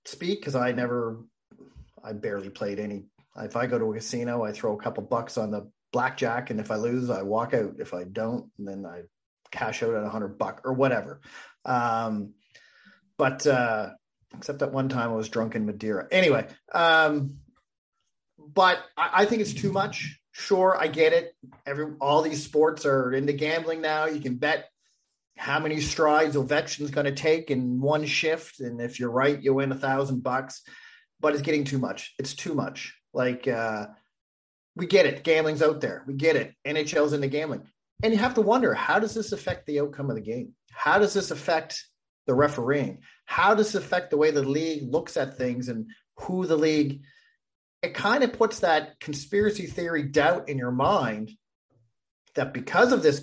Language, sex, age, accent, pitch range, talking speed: English, male, 40-59, American, 125-160 Hz, 190 wpm